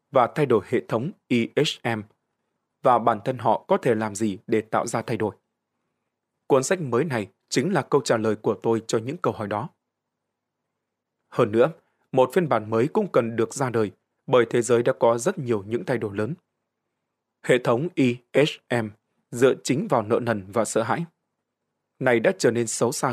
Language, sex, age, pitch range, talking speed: Vietnamese, male, 20-39, 110-125 Hz, 190 wpm